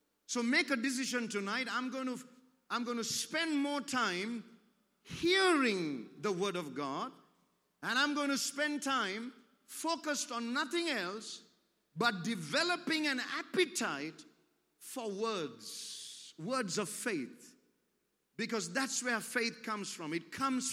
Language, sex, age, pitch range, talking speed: English, male, 50-69, 195-255 Hz, 135 wpm